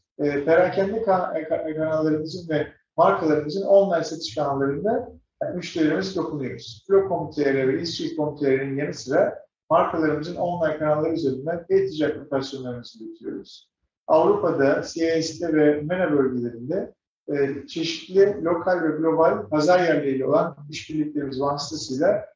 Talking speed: 105 wpm